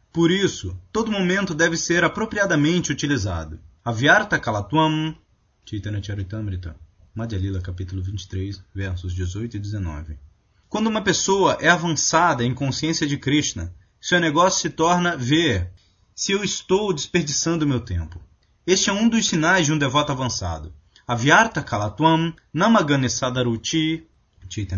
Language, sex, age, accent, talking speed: Portuguese, male, 20-39, Brazilian, 125 wpm